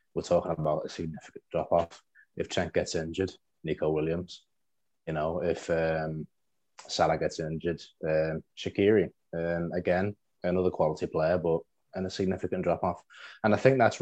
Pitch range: 80-95 Hz